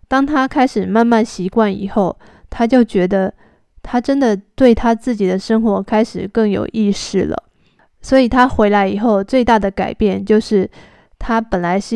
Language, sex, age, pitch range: Chinese, female, 20-39, 200-235 Hz